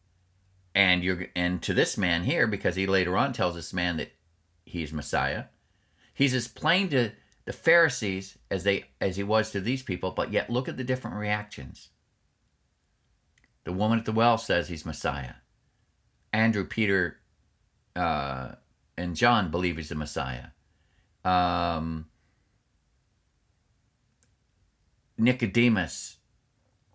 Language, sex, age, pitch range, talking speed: English, male, 50-69, 95-125 Hz, 125 wpm